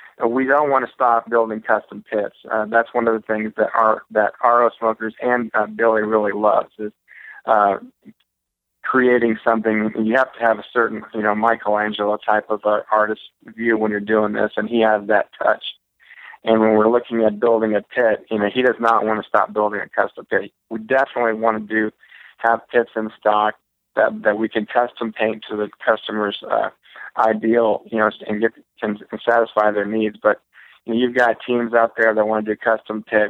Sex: male